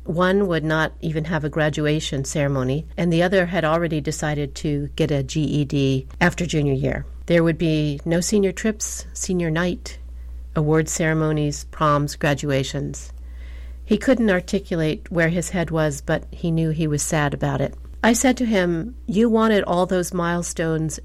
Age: 50-69